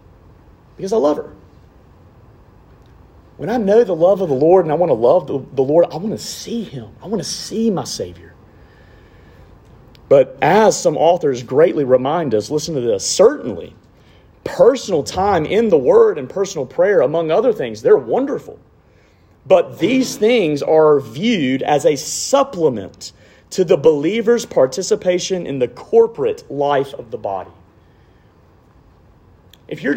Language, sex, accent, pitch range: English, male, American, 120-200 Hz